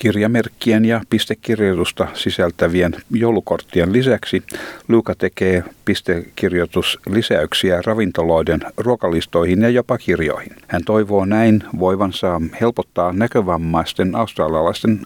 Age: 50-69